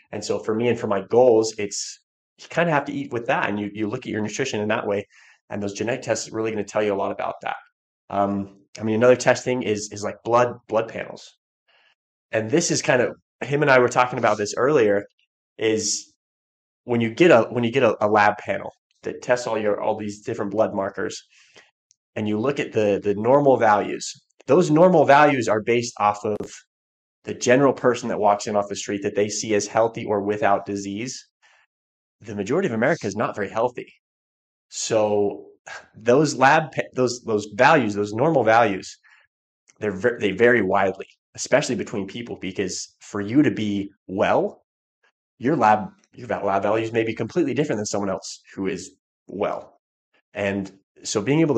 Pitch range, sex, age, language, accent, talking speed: 105-125 Hz, male, 20-39, English, American, 195 wpm